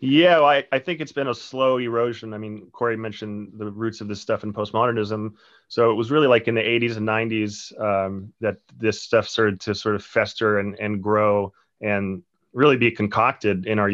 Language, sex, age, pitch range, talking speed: English, male, 30-49, 105-115 Hz, 200 wpm